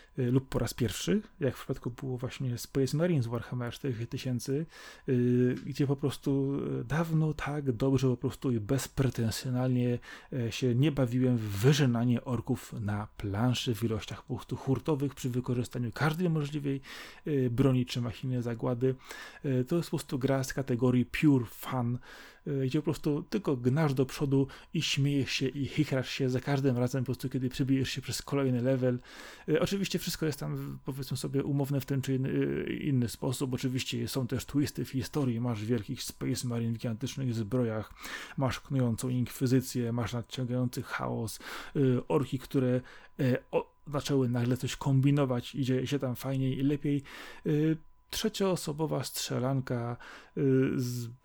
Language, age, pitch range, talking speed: Polish, 30-49, 125-140 Hz, 140 wpm